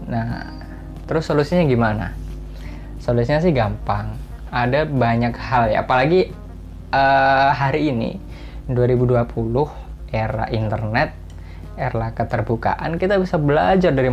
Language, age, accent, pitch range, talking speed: Indonesian, 20-39, native, 110-135 Hz, 100 wpm